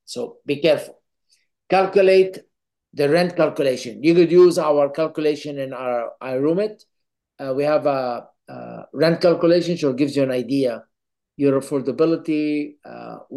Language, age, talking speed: English, 50-69, 135 wpm